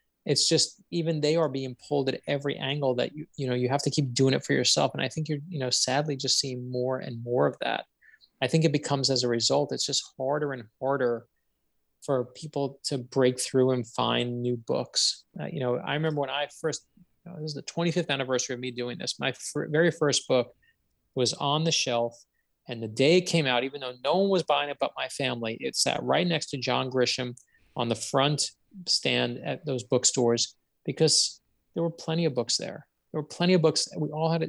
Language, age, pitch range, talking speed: English, 20-39, 125-160 Hz, 220 wpm